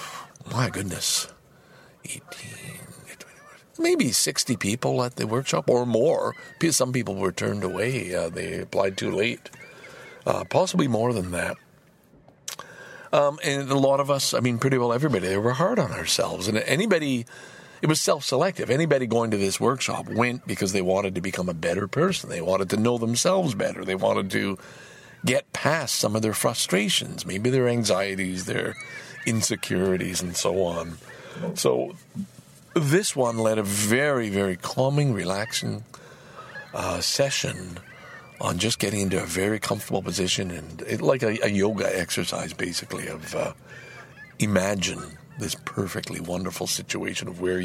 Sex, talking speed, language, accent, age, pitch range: male, 150 wpm, English, American, 50-69, 95-135 Hz